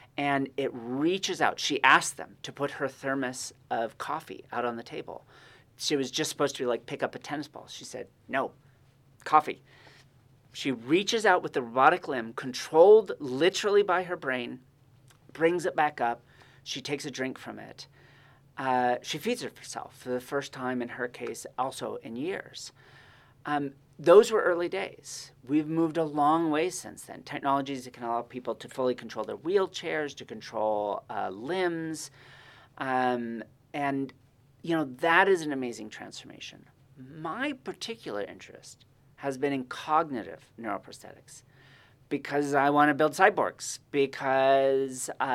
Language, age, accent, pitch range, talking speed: English, 40-59, American, 125-155 Hz, 160 wpm